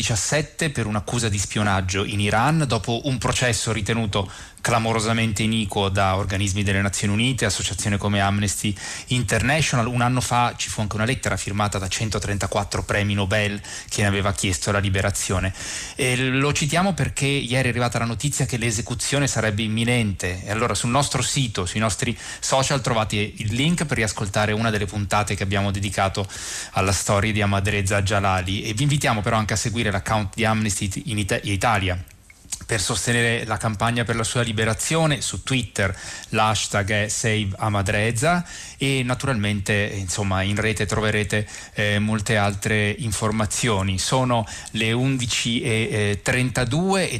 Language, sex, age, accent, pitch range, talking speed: Italian, male, 20-39, native, 100-120 Hz, 150 wpm